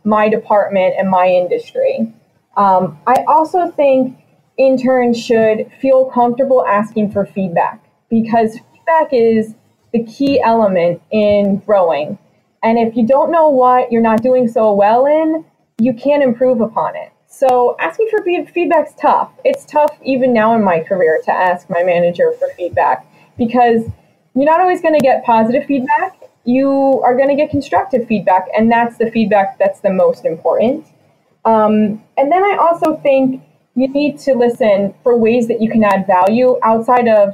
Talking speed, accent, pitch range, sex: 160 wpm, American, 210-275 Hz, female